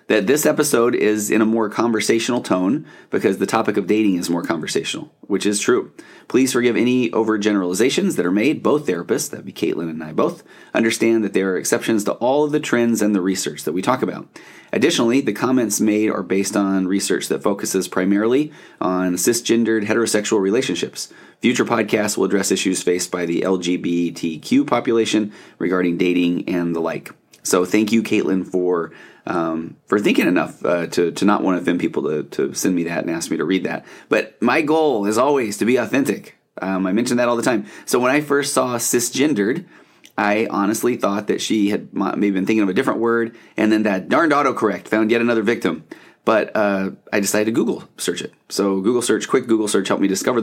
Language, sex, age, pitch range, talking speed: English, male, 30-49, 95-115 Hz, 205 wpm